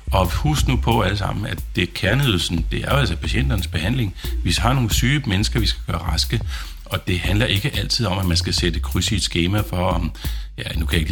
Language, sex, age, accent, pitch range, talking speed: Danish, male, 50-69, native, 80-105 Hz, 235 wpm